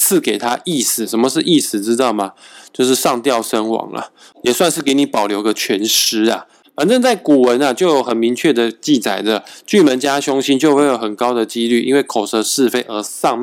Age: 20-39